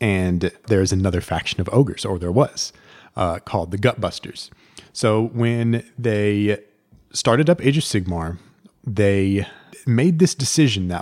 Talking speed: 140 wpm